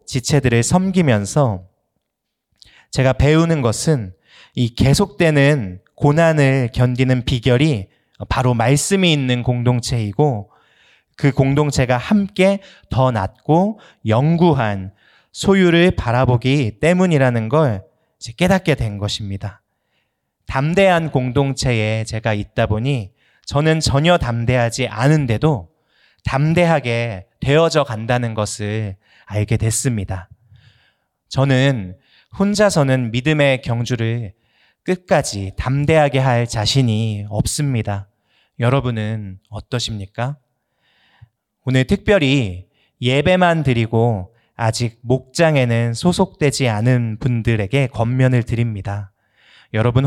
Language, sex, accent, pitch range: Korean, male, native, 110-145 Hz